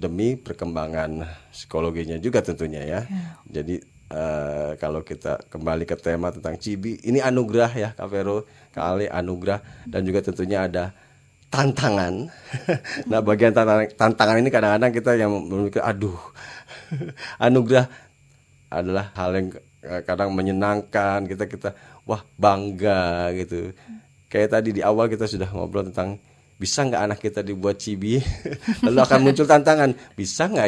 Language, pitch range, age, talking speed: Indonesian, 85-125 Hz, 30-49, 130 wpm